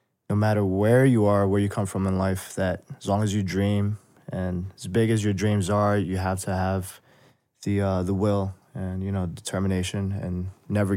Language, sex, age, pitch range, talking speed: English, male, 20-39, 95-100 Hz, 210 wpm